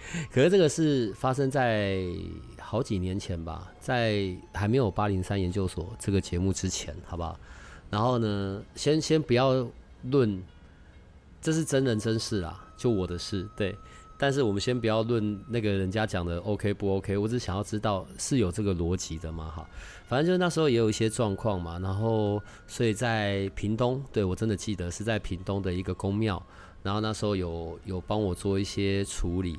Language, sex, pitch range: Chinese, male, 90-115 Hz